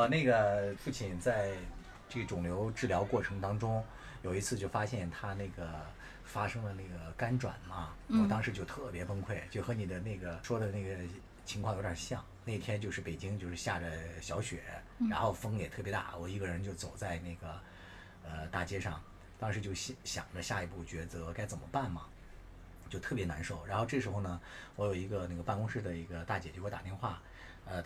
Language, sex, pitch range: Chinese, male, 85-115 Hz